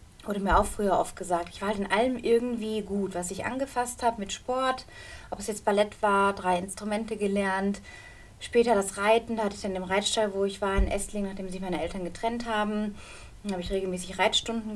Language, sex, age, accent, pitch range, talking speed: German, female, 30-49, German, 180-210 Hz, 210 wpm